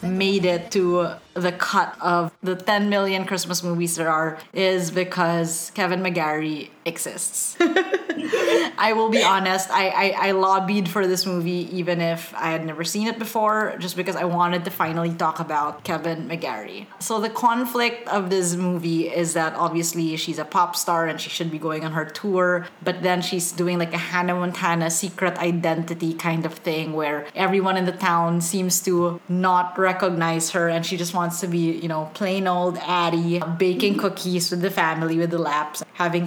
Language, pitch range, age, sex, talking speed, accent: English, 165-195 Hz, 20-39, female, 185 wpm, Filipino